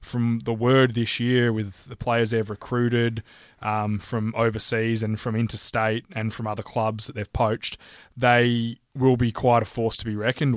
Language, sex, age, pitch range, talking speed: English, male, 20-39, 110-130 Hz, 180 wpm